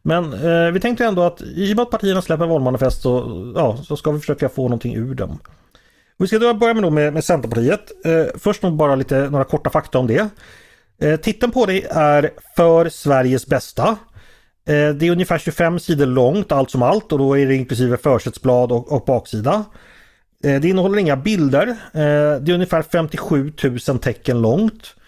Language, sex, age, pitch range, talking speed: Swedish, male, 30-49, 125-170 Hz, 195 wpm